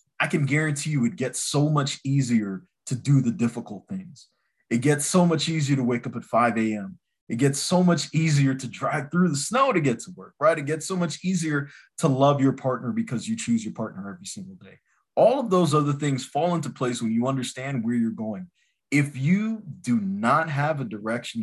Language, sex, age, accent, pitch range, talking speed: English, male, 20-39, American, 115-150 Hz, 220 wpm